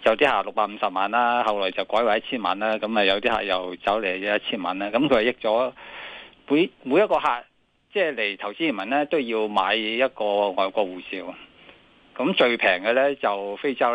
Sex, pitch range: male, 100-130 Hz